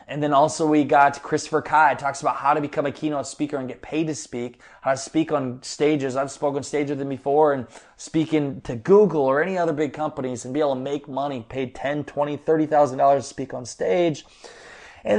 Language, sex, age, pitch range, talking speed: English, male, 20-39, 130-155 Hz, 220 wpm